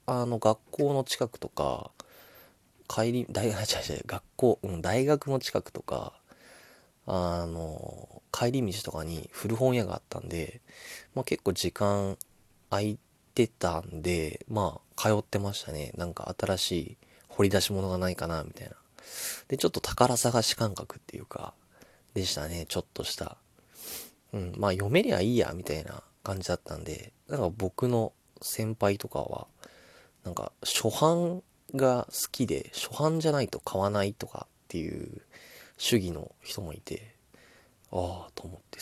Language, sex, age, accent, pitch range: Japanese, male, 20-39, native, 90-115 Hz